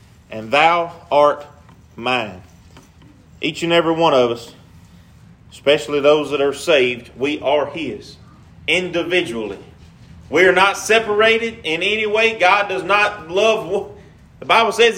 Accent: American